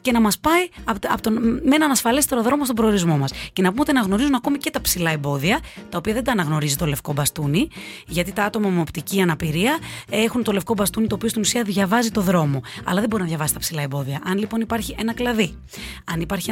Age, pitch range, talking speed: 30-49, 170-230 Hz, 225 wpm